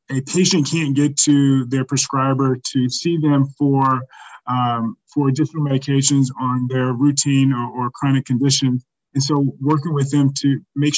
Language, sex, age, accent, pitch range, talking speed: English, male, 30-49, American, 130-150 Hz, 160 wpm